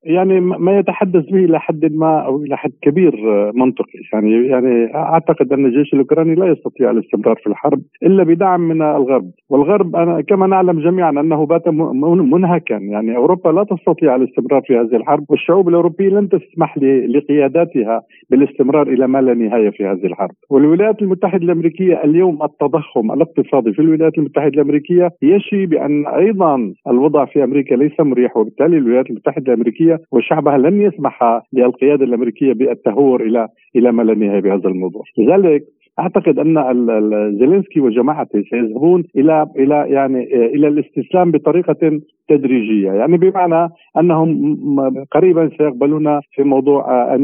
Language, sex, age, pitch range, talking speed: Arabic, male, 50-69, 125-165 Hz, 140 wpm